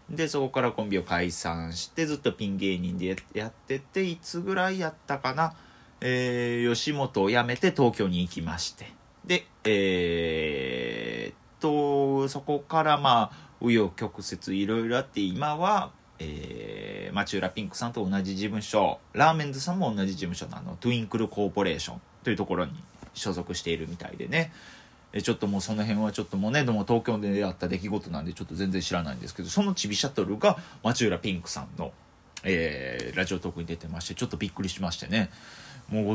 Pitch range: 95-140 Hz